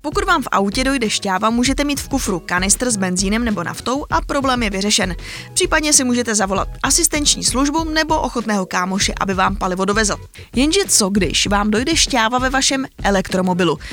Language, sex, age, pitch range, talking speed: Czech, female, 20-39, 195-265 Hz, 175 wpm